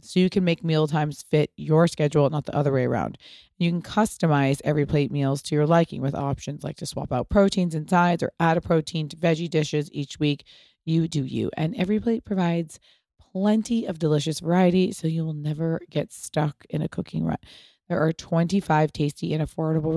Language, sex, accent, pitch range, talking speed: English, female, American, 155-180 Hz, 205 wpm